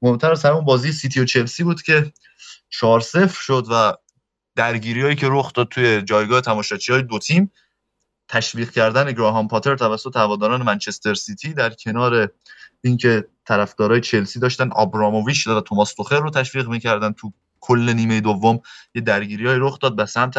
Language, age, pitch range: Persian, 20-39, 110-140 Hz